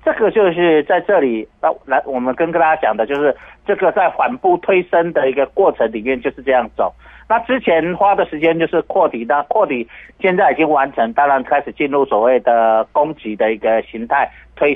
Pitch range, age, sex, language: 130-165 Hz, 50-69, male, Chinese